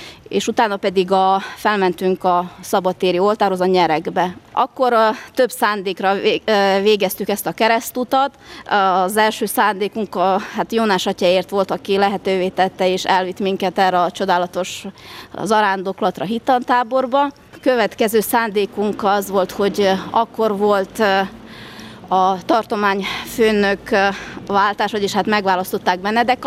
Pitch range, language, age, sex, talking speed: 185-225 Hz, Hungarian, 30-49, female, 120 wpm